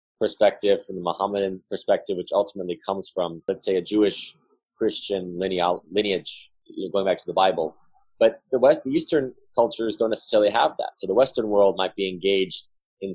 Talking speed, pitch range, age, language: 185 wpm, 90-105 Hz, 20-39, English